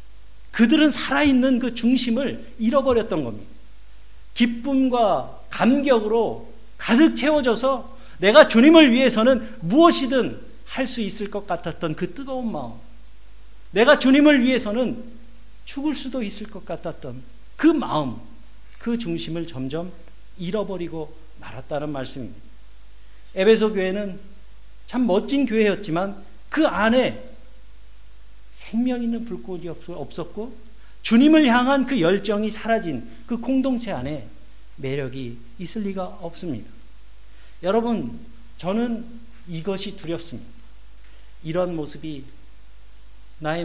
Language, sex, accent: Korean, male, native